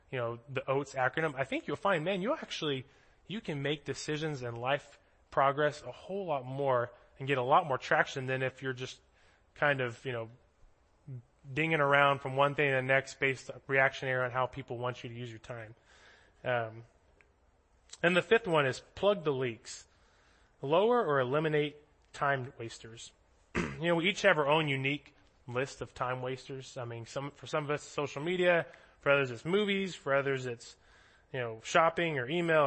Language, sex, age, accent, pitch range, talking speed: English, male, 20-39, American, 125-150 Hz, 190 wpm